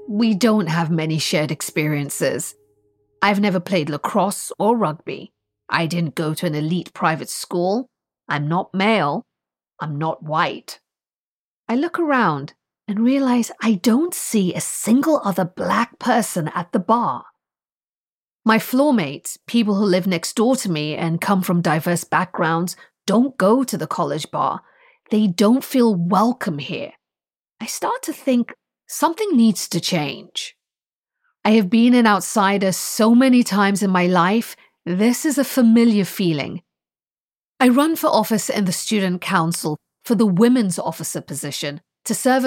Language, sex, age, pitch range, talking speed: English, female, 30-49, 170-230 Hz, 150 wpm